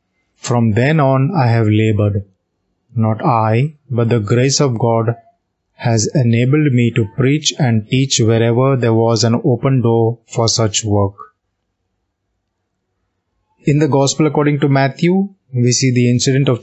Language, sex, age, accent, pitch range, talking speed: Hindi, male, 20-39, native, 105-130 Hz, 145 wpm